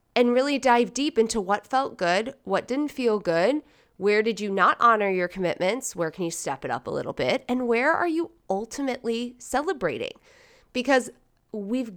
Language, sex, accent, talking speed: English, female, American, 180 wpm